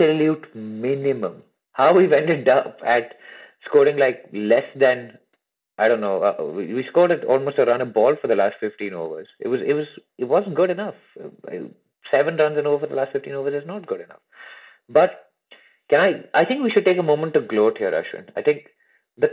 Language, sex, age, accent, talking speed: English, male, 30-49, Indian, 210 wpm